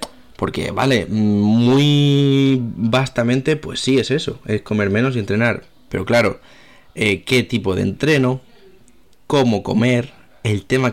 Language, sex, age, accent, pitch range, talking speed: Spanish, male, 20-39, Spanish, 110-130 Hz, 130 wpm